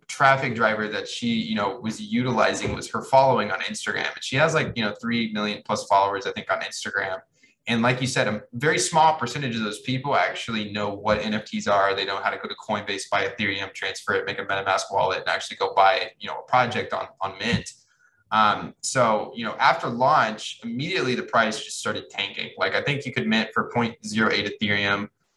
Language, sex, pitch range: English, male, 105-130 Hz